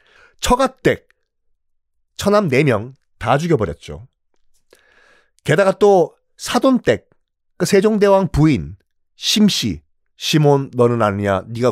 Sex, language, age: male, Korean, 40-59